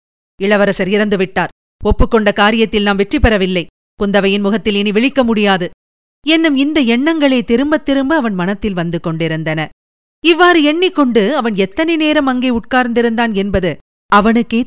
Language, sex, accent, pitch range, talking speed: Tamil, female, native, 200-295 Hz, 125 wpm